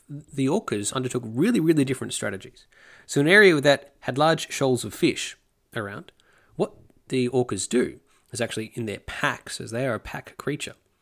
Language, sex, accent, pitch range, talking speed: English, male, Australian, 100-130 Hz, 175 wpm